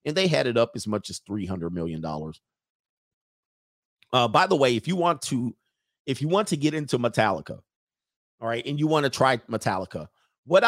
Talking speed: 200 wpm